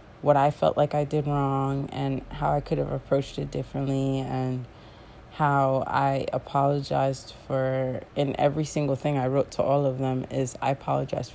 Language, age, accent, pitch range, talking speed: English, 30-49, American, 130-150 Hz, 175 wpm